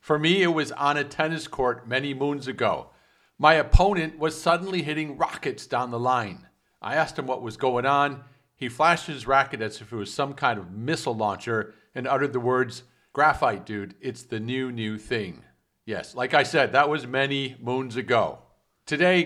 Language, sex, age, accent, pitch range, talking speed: English, male, 50-69, American, 120-155 Hz, 190 wpm